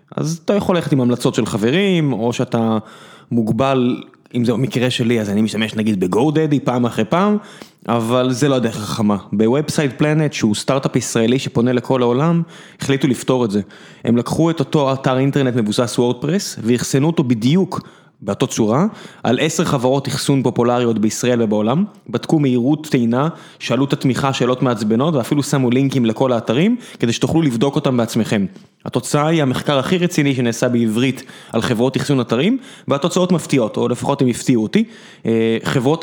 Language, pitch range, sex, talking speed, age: Hebrew, 115-155 Hz, male, 165 wpm, 20-39